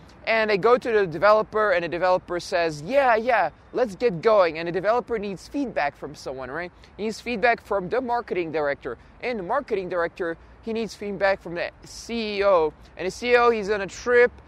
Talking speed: 195 wpm